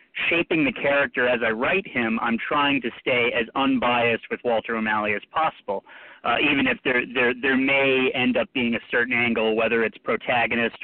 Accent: American